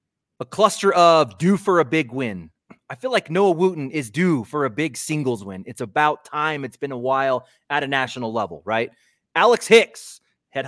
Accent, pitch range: American, 135-180 Hz